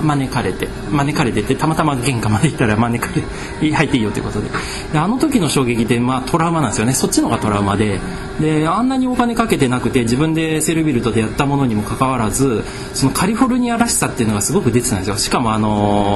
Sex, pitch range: male, 115-160 Hz